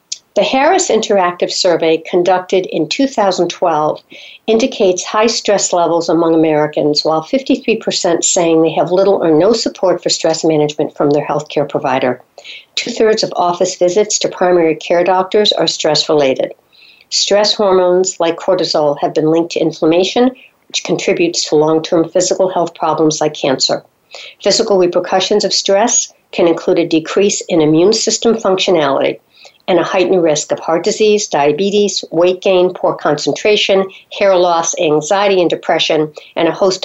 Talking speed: 145 wpm